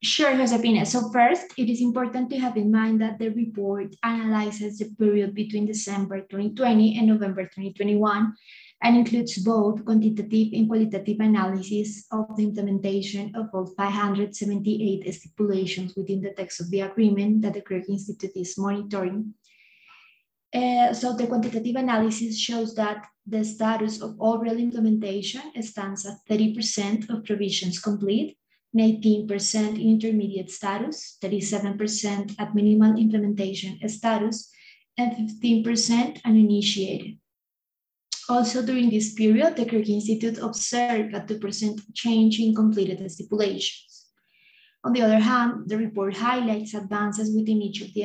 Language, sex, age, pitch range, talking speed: English, female, 20-39, 200-230 Hz, 130 wpm